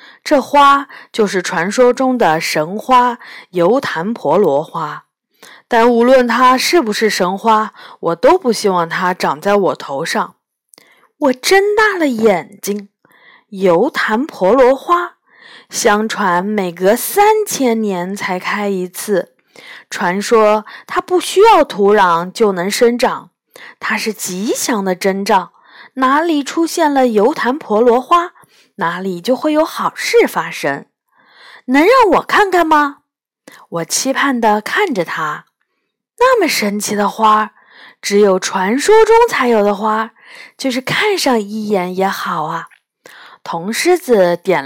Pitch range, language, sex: 195-290 Hz, Chinese, female